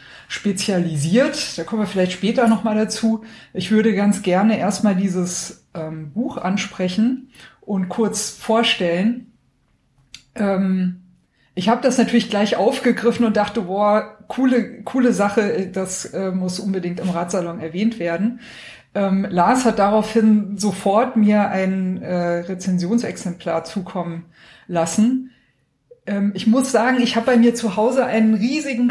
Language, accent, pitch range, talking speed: German, German, 190-230 Hz, 135 wpm